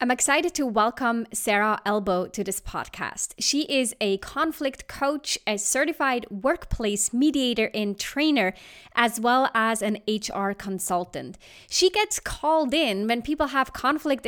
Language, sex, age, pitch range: English, female, 20-39, 205-270 Hz